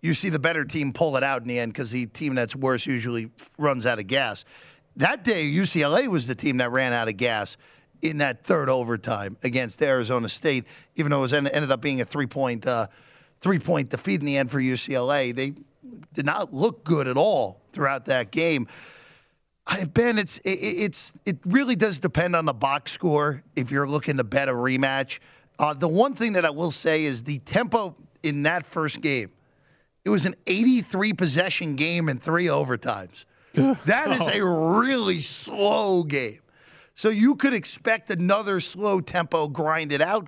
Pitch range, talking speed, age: 140-190 Hz, 175 wpm, 40-59